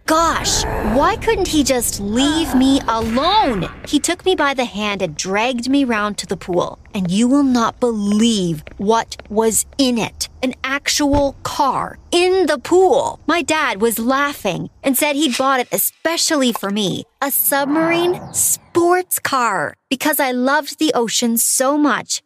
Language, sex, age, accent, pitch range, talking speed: English, female, 30-49, American, 215-305 Hz, 160 wpm